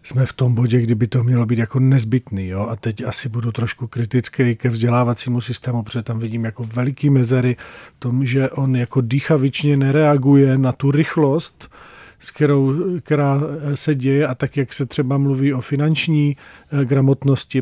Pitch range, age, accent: 130-145 Hz, 40-59, native